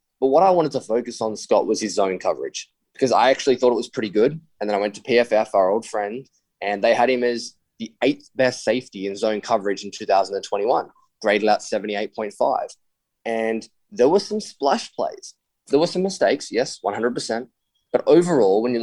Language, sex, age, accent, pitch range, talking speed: English, male, 20-39, Australian, 110-135 Hz, 200 wpm